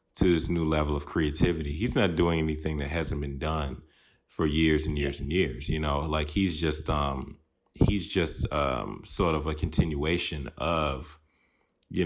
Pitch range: 75-90 Hz